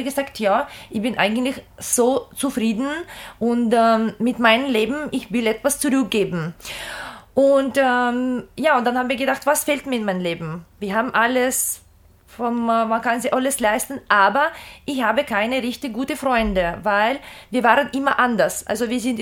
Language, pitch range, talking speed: German, 225-280 Hz, 170 wpm